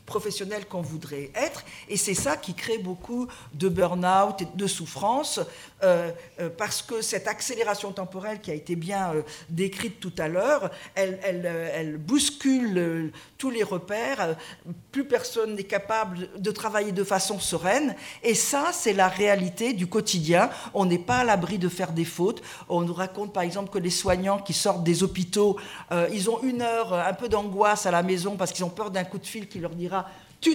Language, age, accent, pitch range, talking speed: French, 50-69, French, 185-225 Hz, 190 wpm